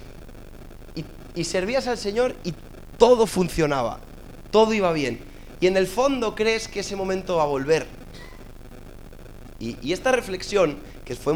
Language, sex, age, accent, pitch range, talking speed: English, male, 30-49, Spanish, 125-180 Hz, 145 wpm